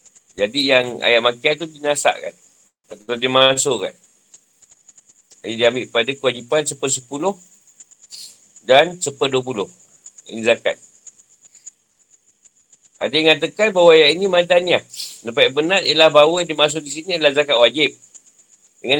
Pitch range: 130-165 Hz